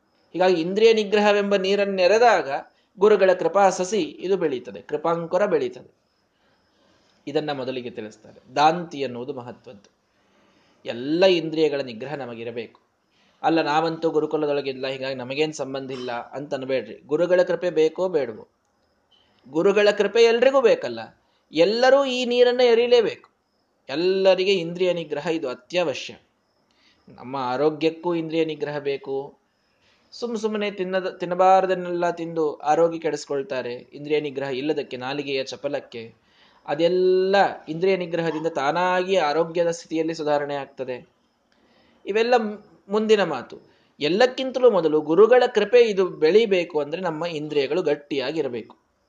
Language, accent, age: Kannada, native, 20-39